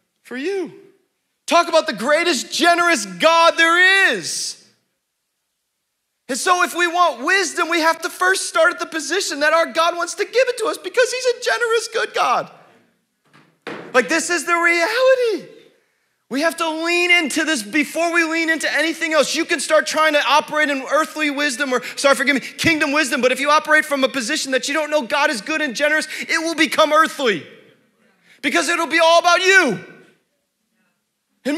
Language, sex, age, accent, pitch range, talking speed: English, male, 30-49, American, 280-345 Hz, 185 wpm